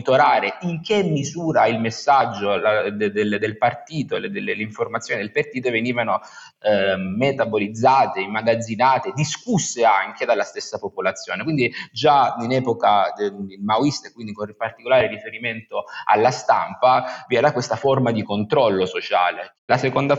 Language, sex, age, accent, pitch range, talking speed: Italian, male, 30-49, native, 105-130 Hz, 125 wpm